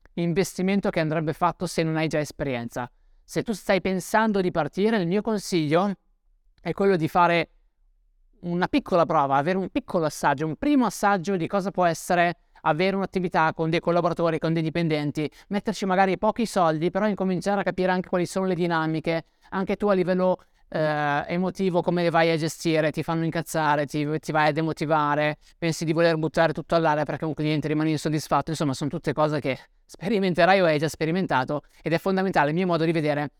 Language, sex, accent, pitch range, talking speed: Italian, male, native, 155-190 Hz, 190 wpm